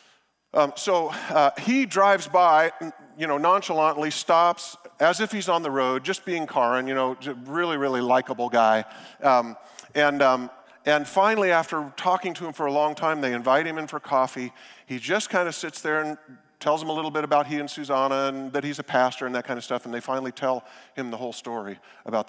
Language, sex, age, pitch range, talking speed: English, male, 40-59, 125-165 Hz, 215 wpm